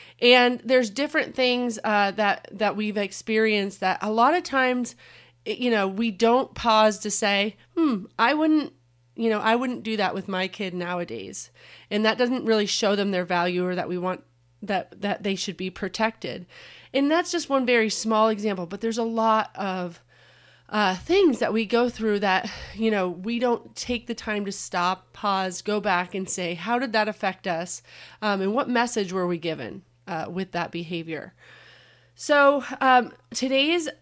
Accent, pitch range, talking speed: American, 200-245 Hz, 185 wpm